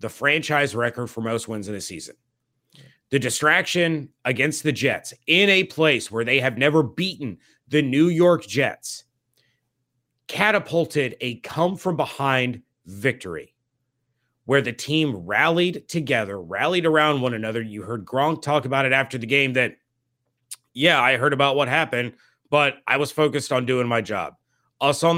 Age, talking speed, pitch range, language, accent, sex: 30-49, 160 wpm, 120-150 Hz, English, American, male